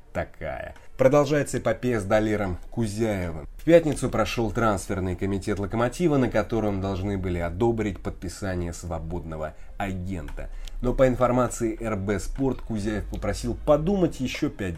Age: 30-49